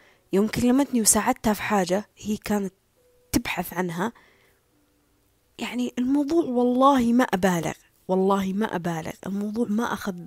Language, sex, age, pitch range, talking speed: Arabic, female, 20-39, 185-260 Hz, 115 wpm